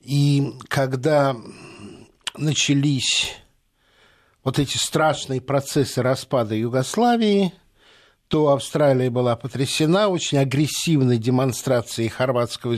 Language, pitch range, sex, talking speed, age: Russian, 125-160 Hz, male, 80 wpm, 60-79